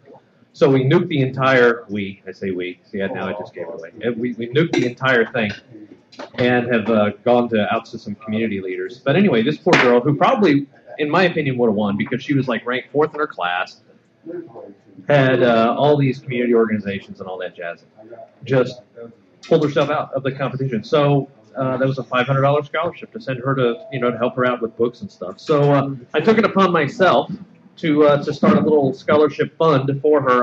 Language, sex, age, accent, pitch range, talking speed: English, male, 40-59, American, 115-145 Hz, 220 wpm